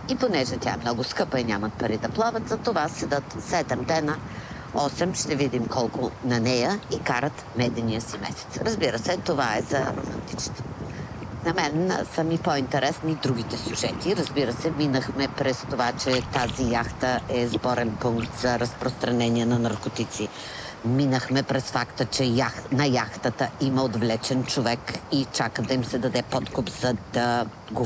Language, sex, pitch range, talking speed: Bulgarian, female, 115-140 Hz, 155 wpm